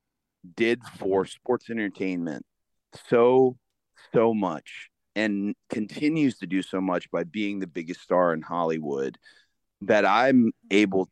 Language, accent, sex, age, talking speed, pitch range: English, American, male, 30-49, 125 wpm, 90-115 Hz